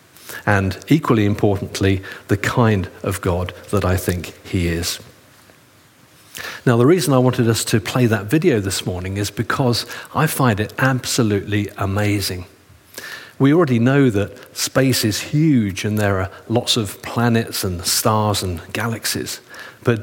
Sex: male